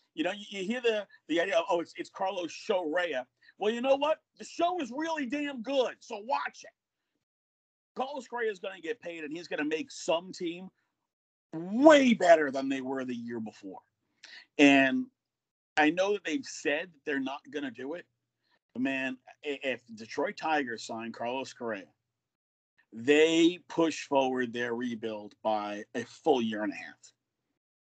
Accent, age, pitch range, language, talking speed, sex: American, 50-69, 125-190 Hz, English, 175 wpm, male